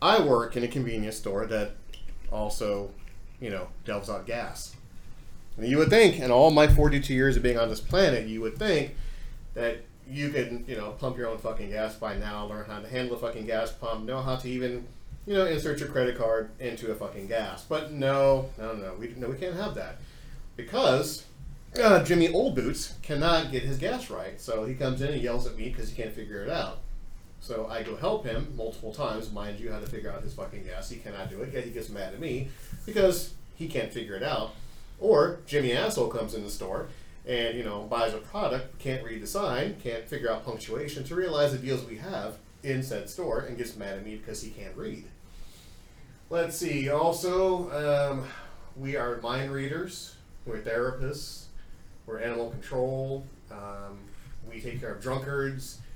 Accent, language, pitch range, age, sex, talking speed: American, English, 110-135 Hz, 40-59, male, 200 wpm